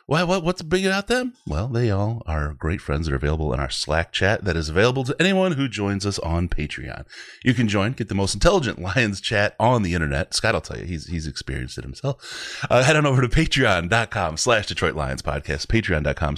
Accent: American